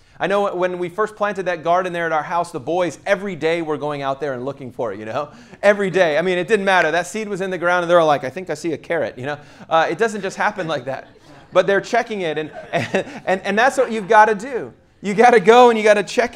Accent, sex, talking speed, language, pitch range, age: American, male, 295 wpm, English, 155-200 Hz, 30-49